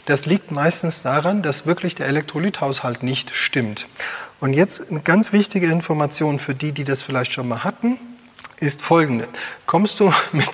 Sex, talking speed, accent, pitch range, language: male, 165 wpm, German, 140-180 Hz, German